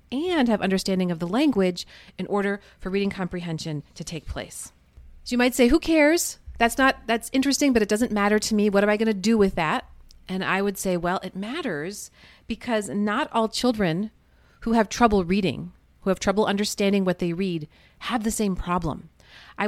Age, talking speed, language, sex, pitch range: 40-59, 195 wpm, English, female, 180-230 Hz